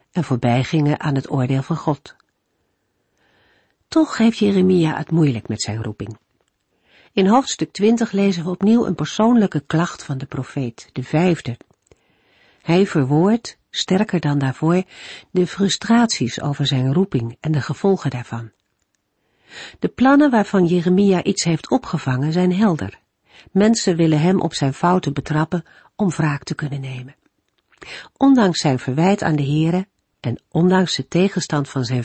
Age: 50-69